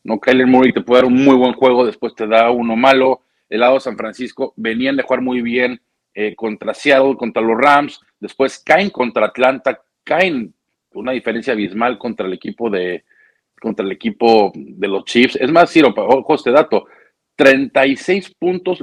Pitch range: 115-145 Hz